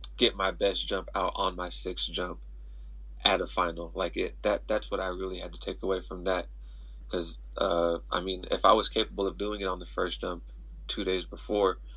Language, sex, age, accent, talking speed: English, male, 30-49, American, 215 wpm